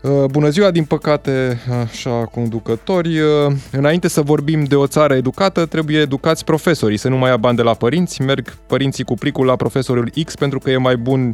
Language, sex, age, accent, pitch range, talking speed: Romanian, male, 20-39, native, 125-150 Hz, 190 wpm